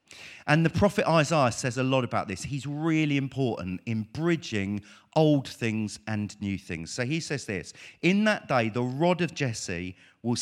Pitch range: 115-150 Hz